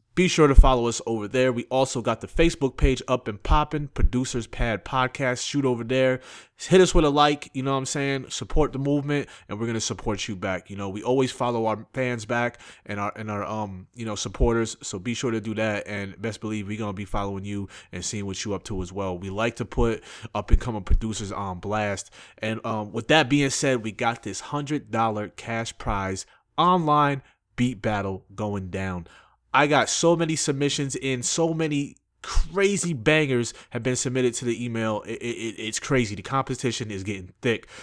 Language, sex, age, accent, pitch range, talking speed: English, male, 30-49, American, 105-130 Hz, 210 wpm